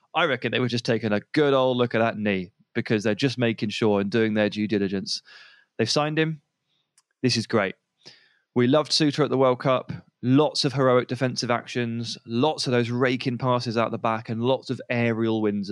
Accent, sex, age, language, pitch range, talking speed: British, male, 20-39, English, 105-135 Hz, 205 wpm